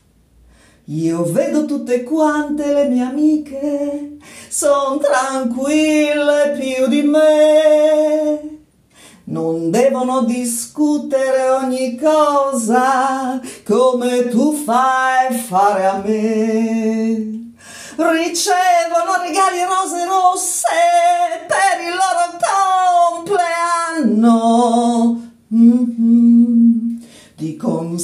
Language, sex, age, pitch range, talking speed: Italian, female, 40-59, 230-310 Hz, 70 wpm